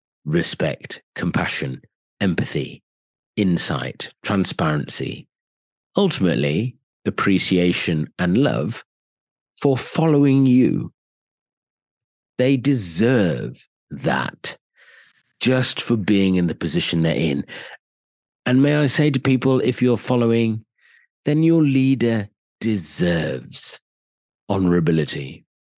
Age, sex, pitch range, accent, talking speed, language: 40-59, male, 95-135 Hz, British, 85 wpm, English